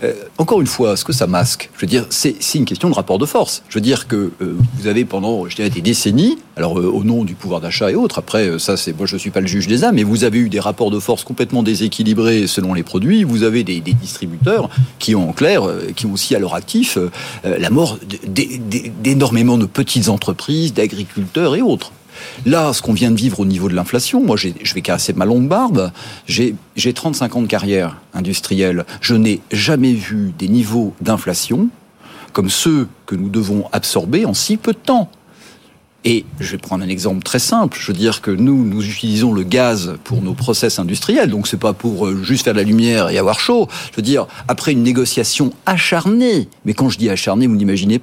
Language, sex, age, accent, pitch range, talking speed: French, male, 40-59, French, 100-135 Hz, 230 wpm